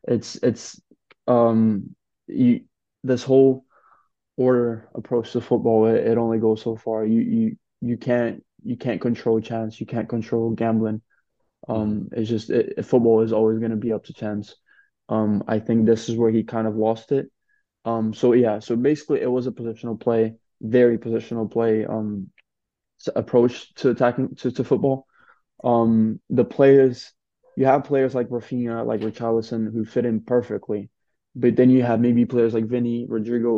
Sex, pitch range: male, 110-125 Hz